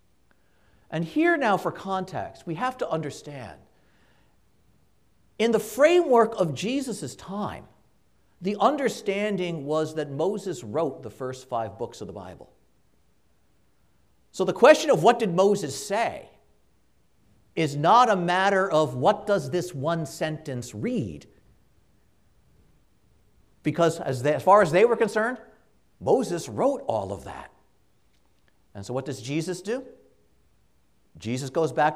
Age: 50-69